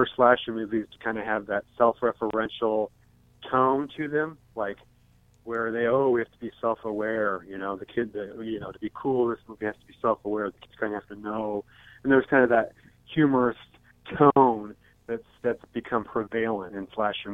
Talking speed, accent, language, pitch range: 190 wpm, American, English, 105-120 Hz